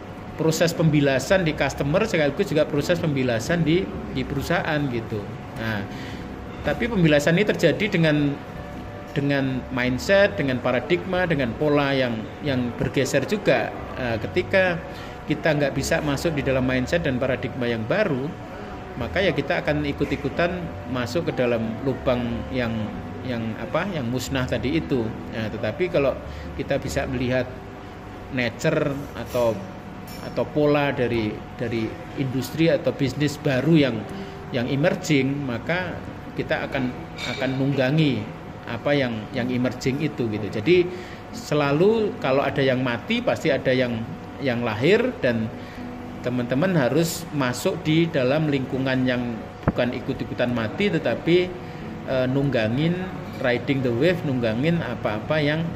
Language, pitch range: English, 120-155 Hz